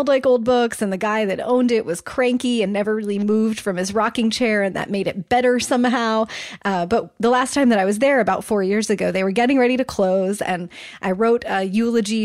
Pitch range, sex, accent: 190-230 Hz, female, American